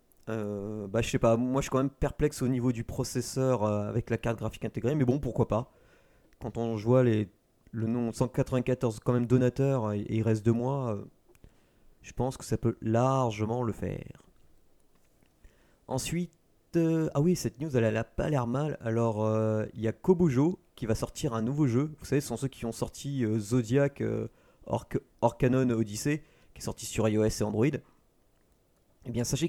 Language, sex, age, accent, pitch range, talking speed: French, male, 30-49, French, 115-140 Hz, 190 wpm